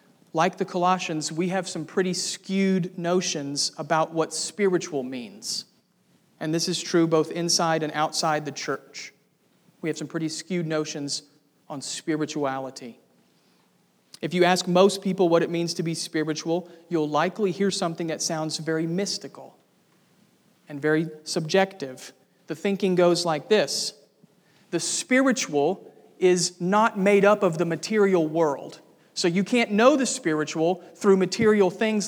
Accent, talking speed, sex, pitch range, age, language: American, 145 wpm, male, 165-205 Hz, 40-59, English